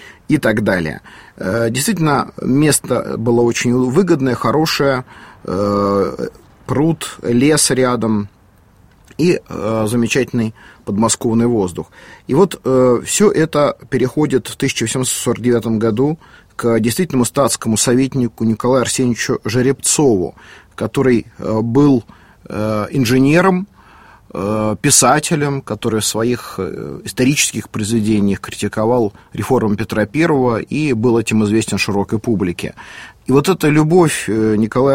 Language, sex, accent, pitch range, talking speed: Russian, male, native, 110-135 Hz, 95 wpm